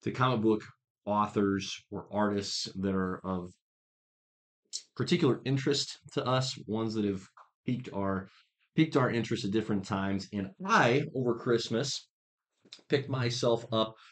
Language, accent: English, American